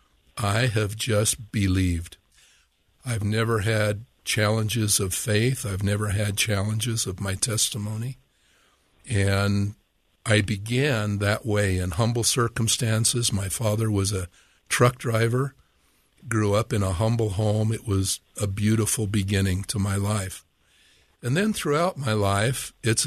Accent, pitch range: American, 95-115 Hz